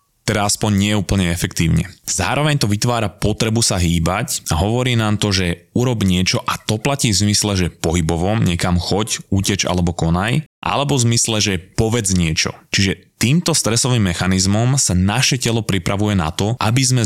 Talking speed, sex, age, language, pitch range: 170 wpm, male, 20-39, Slovak, 90-115 Hz